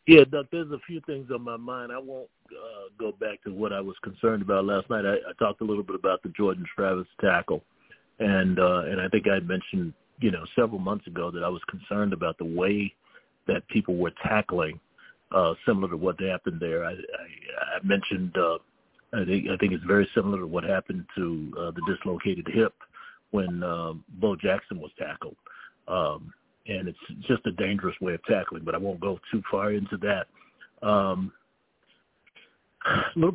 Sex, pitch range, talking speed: male, 95-110 Hz, 195 wpm